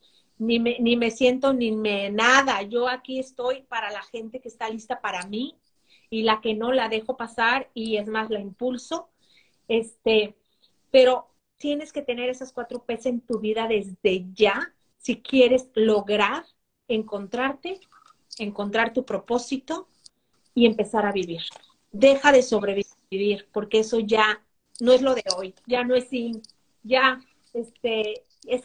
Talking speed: 155 wpm